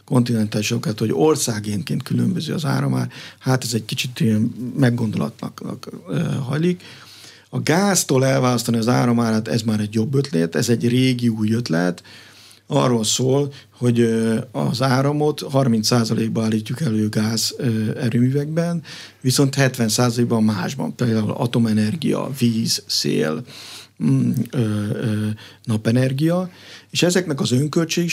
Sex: male